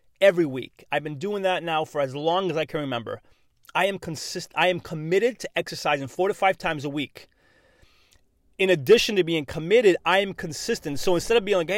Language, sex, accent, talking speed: English, male, American, 210 wpm